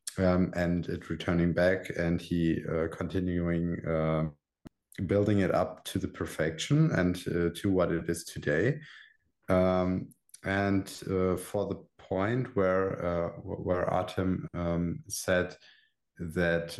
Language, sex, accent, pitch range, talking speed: English, male, German, 85-95 Hz, 130 wpm